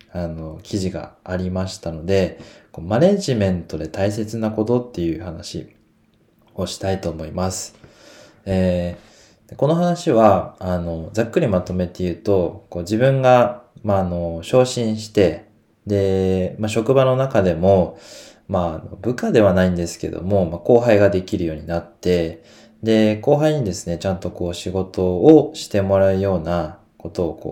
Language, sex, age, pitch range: Japanese, male, 20-39, 85-110 Hz